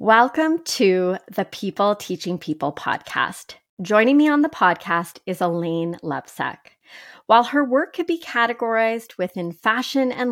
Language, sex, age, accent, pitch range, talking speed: English, female, 30-49, American, 175-235 Hz, 140 wpm